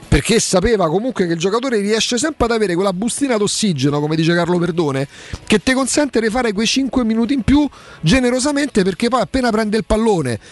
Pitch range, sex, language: 140-205 Hz, male, Italian